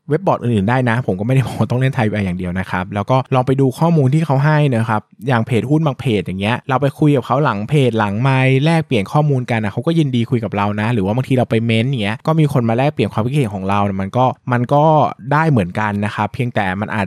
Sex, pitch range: male, 110-145 Hz